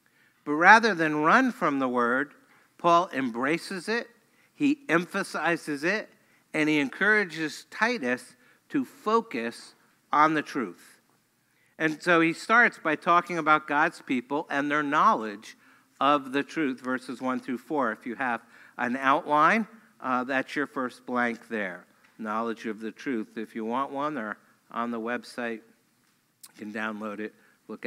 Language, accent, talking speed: English, American, 145 wpm